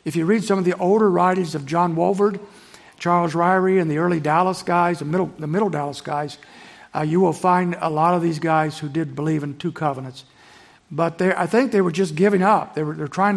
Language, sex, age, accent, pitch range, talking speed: English, male, 60-79, American, 165-200 Hz, 240 wpm